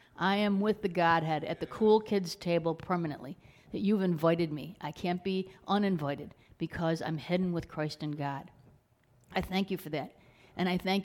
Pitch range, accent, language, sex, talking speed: 160-185 Hz, American, English, female, 185 wpm